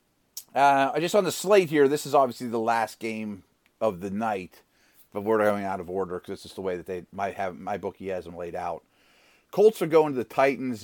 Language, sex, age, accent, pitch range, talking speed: English, male, 30-49, American, 105-130 Hz, 235 wpm